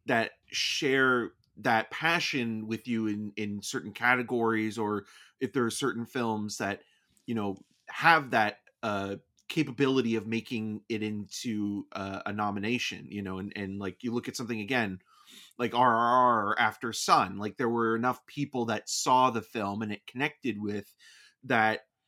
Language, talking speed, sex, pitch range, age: English, 160 wpm, male, 105-130 Hz, 30-49